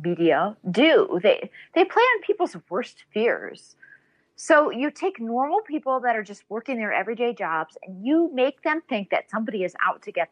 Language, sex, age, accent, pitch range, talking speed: English, female, 30-49, American, 205-315 Hz, 185 wpm